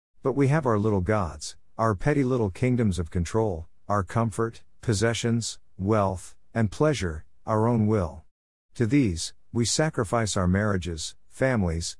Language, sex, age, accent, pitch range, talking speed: English, male, 50-69, American, 90-115 Hz, 140 wpm